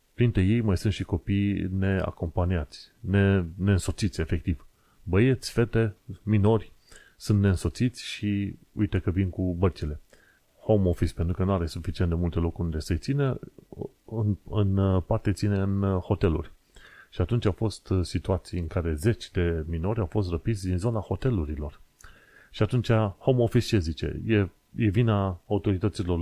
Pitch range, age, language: 85-105 Hz, 30-49, Romanian